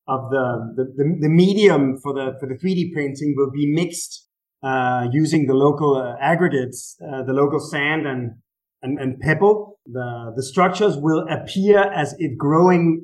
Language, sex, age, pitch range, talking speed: English, male, 30-49, 135-165 Hz, 170 wpm